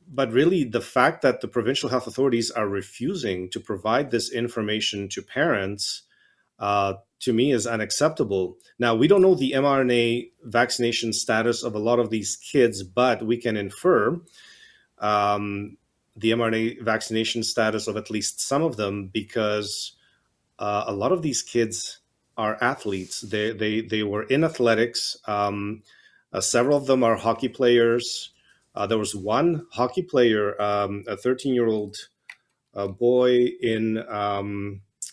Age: 30-49